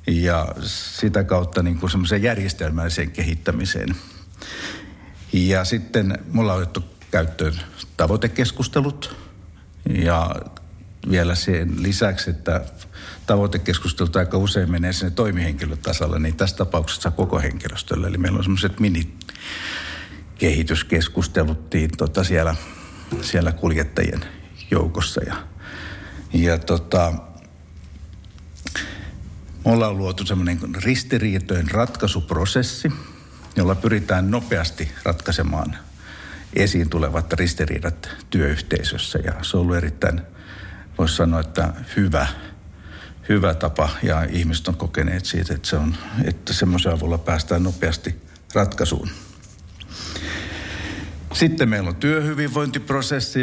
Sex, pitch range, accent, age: male, 80-100 Hz, native, 60-79